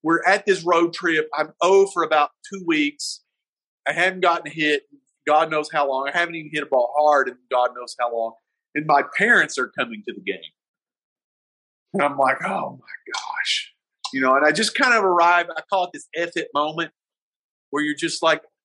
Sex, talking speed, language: male, 205 wpm, English